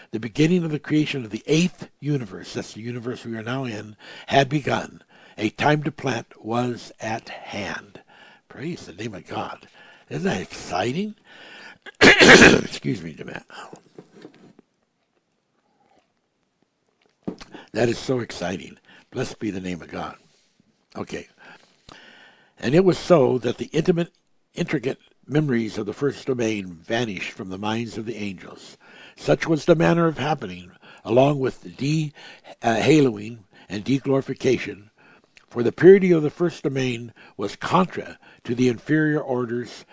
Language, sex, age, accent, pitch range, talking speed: English, male, 60-79, American, 115-150 Hz, 140 wpm